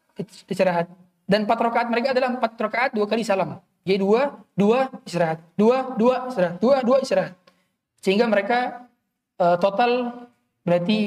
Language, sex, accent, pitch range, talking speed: Indonesian, male, native, 190-245 Hz, 125 wpm